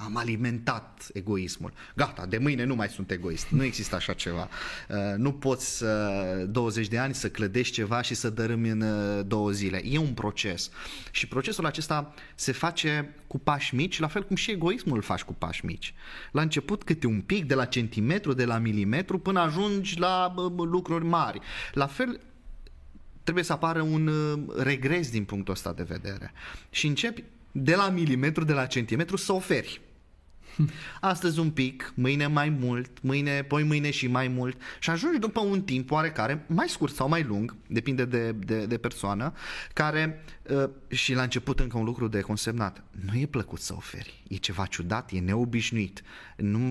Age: 20-39